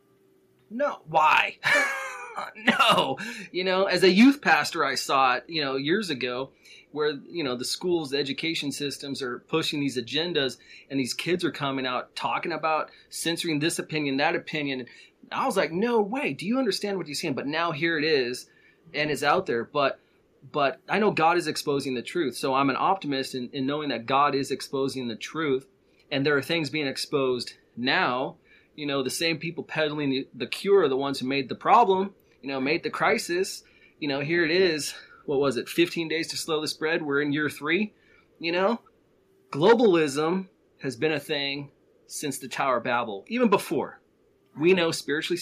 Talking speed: 190 wpm